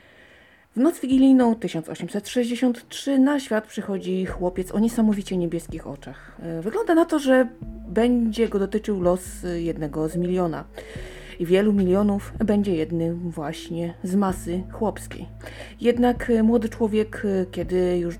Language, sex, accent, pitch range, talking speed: Polish, female, native, 165-220 Hz, 120 wpm